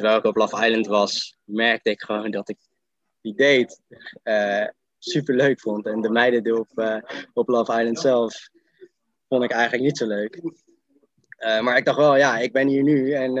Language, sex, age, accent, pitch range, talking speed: Dutch, male, 20-39, Dutch, 105-130 Hz, 195 wpm